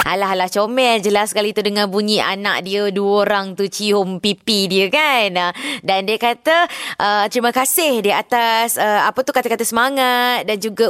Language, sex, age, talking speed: Malay, female, 20-39, 175 wpm